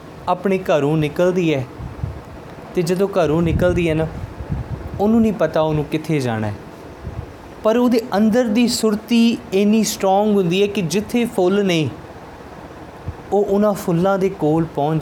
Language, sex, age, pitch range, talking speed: Punjabi, male, 20-39, 140-195 Hz, 145 wpm